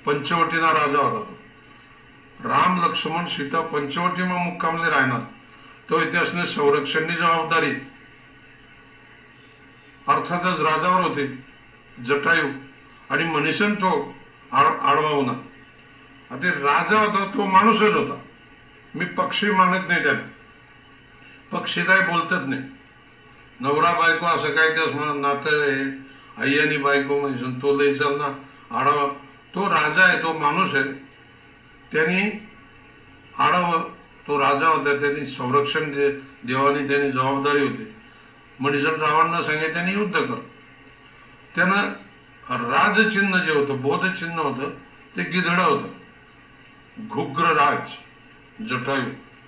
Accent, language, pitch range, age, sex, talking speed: native, Marathi, 140-175 Hz, 60-79, male, 90 wpm